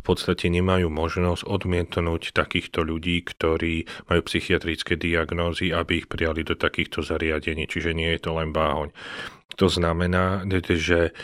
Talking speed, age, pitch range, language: 140 wpm, 40-59, 80-90 Hz, Slovak